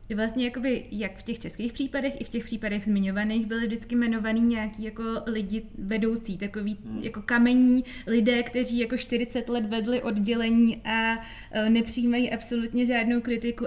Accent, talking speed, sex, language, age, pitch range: native, 150 wpm, female, Czech, 20-39, 205-235 Hz